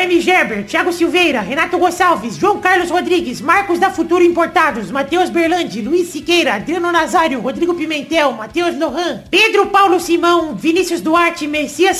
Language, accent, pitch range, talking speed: Portuguese, Brazilian, 315-360 Hz, 145 wpm